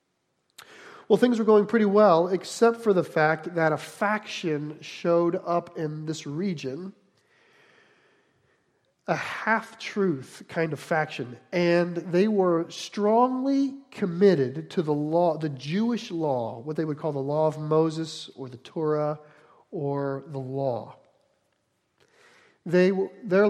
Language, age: English, 40-59